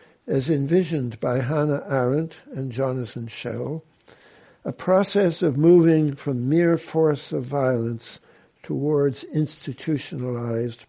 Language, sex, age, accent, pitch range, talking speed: English, male, 60-79, American, 125-170 Hz, 105 wpm